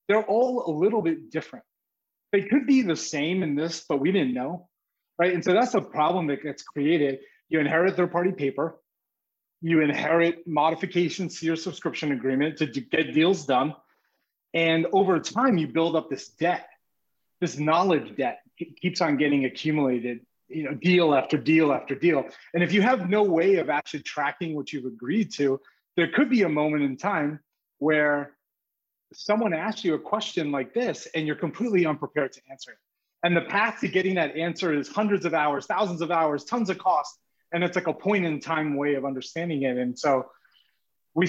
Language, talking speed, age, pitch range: English, 185 wpm, 30-49, 145-175 Hz